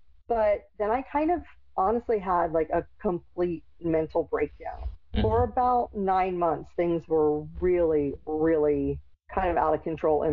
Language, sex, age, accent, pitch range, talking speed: English, female, 50-69, American, 145-180 Hz, 150 wpm